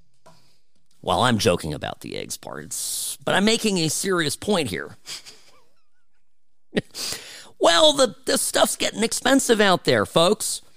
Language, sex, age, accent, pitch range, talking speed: English, male, 40-59, American, 125-170 Hz, 130 wpm